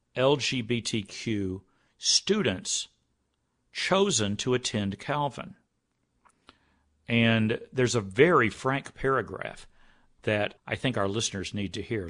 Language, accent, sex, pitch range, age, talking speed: English, American, male, 105-130 Hz, 50-69, 100 wpm